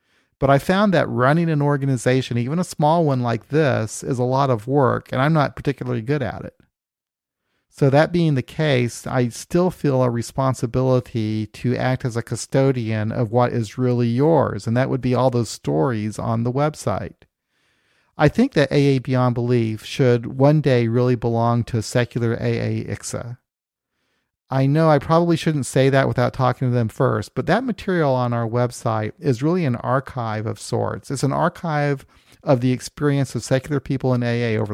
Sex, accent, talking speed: male, American, 185 wpm